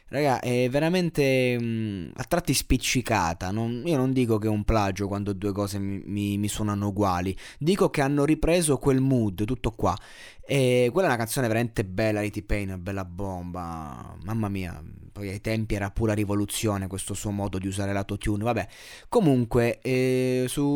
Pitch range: 105-140 Hz